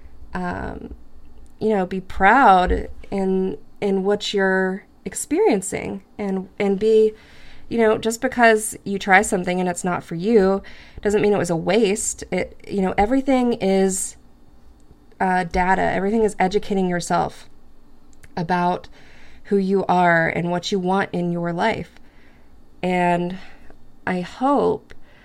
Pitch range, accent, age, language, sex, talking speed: 175-210 Hz, American, 20-39, English, female, 135 wpm